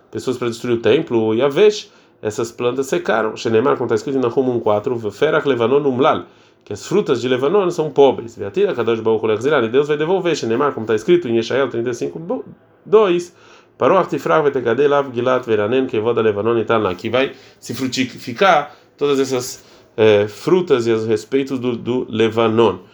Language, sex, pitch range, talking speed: Portuguese, male, 115-140 Hz, 140 wpm